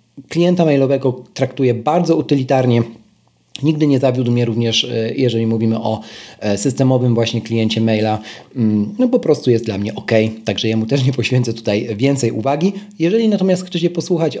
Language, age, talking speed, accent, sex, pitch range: Polish, 40-59, 155 wpm, native, male, 115-160 Hz